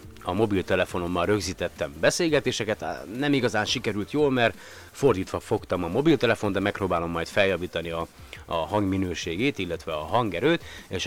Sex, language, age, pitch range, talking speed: male, Hungarian, 30-49, 90-110 Hz, 130 wpm